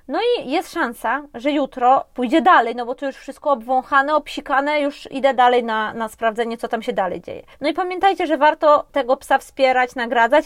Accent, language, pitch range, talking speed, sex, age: native, Polish, 245-295 Hz, 200 wpm, female, 20-39